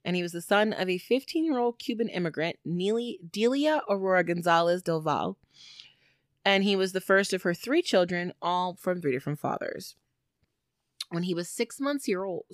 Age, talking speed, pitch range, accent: 30-49, 170 wpm, 170-225 Hz, American